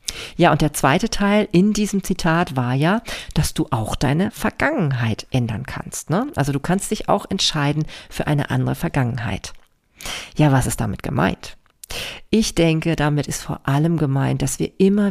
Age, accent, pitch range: 40-59, German, 135-175 Hz